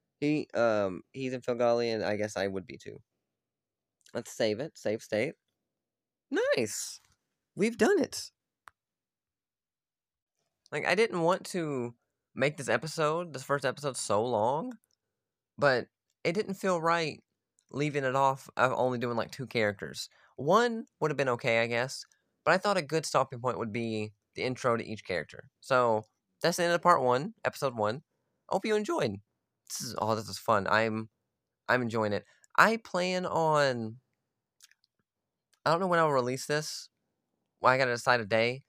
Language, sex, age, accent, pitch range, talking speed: English, male, 20-39, American, 110-150 Hz, 165 wpm